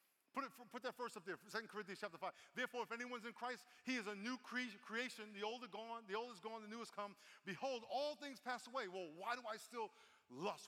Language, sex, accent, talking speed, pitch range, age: English, male, American, 255 wpm, 200-250 Hz, 50-69